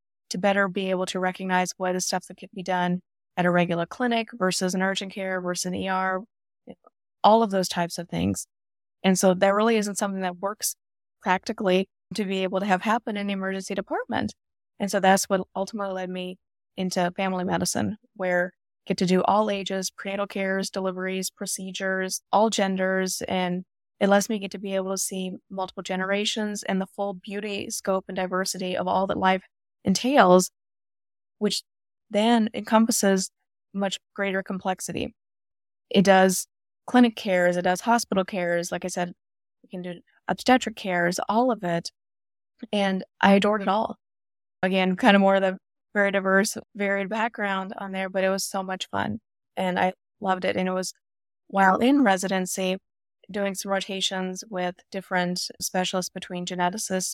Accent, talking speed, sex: American, 170 wpm, female